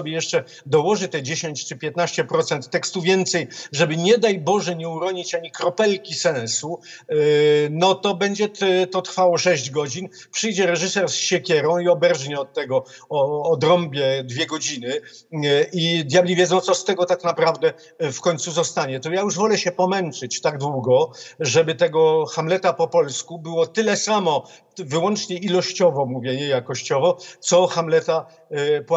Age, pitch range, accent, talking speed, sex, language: 50-69, 150-180 Hz, native, 155 wpm, male, Polish